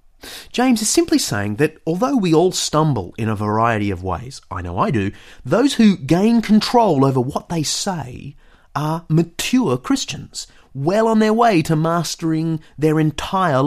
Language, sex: English, male